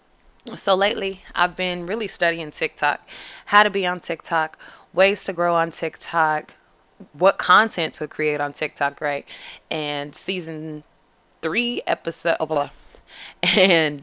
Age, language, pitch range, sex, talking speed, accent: 20-39, English, 155-185 Hz, female, 125 wpm, American